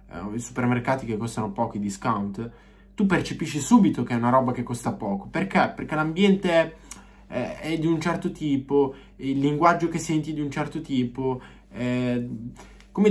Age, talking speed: 20-39, 160 wpm